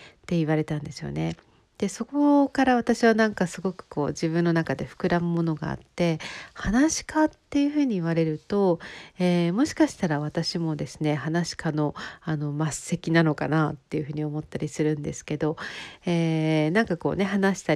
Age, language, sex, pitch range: 40-59, Japanese, female, 155-225 Hz